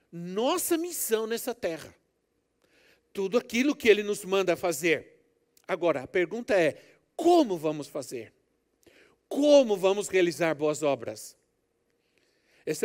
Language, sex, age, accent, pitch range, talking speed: Portuguese, male, 60-79, Brazilian, 175-265 Hz, 110 wpm